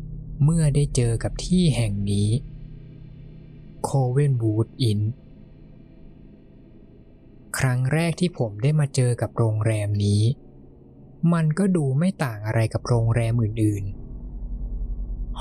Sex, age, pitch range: male, 20-39, 105-145 Hz